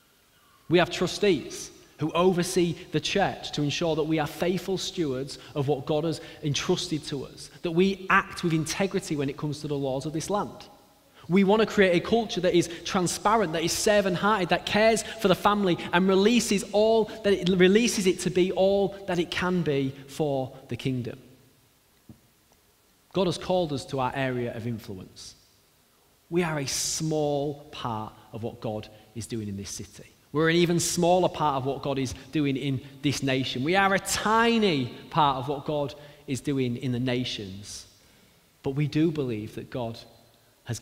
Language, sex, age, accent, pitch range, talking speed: English, male, 20-39, British, 120-180 Hz, 180 wpm